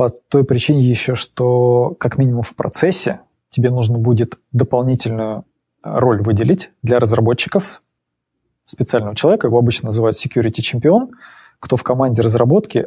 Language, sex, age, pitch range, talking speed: Russian, male, 20-39, 115-135 Hz, 130 wpm